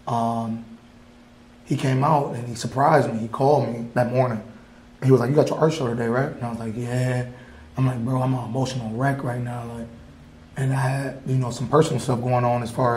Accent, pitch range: American, 120-140 Hz